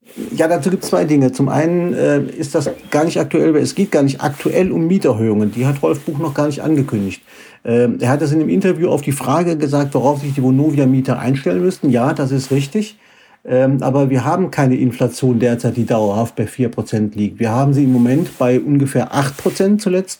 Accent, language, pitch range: German, German, 125-160 Hz